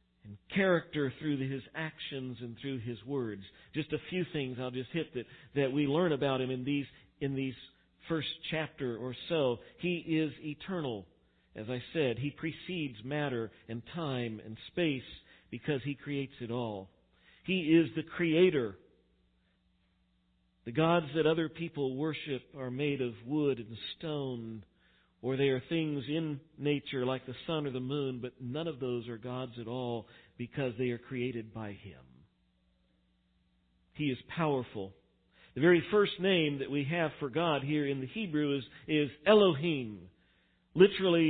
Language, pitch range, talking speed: English, 115-155 Hz, 160 wpm